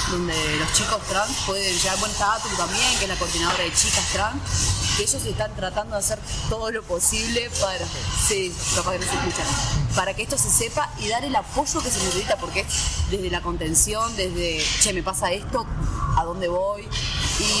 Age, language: 20-39, Spanish